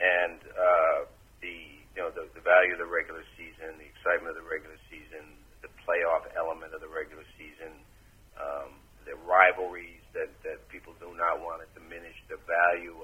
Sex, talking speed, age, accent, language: male, 175 wpm, 50-69, American, English